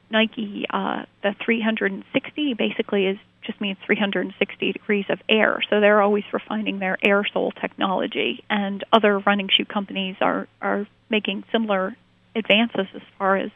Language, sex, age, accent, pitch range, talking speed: English, female, 30-49, American, 195-220 Hz, 145 wpm